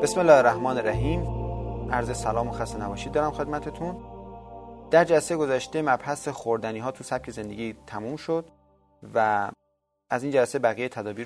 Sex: male